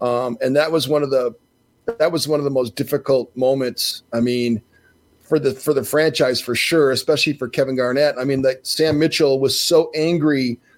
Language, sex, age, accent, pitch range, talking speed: English, male, 40-59, American, 130-165 Hz, 200 wpm